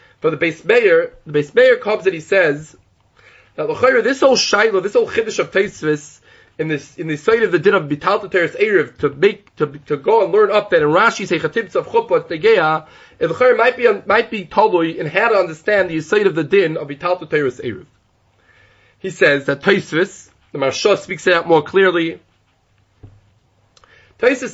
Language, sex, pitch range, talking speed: English, male, 155-260 Hz, 195 wpm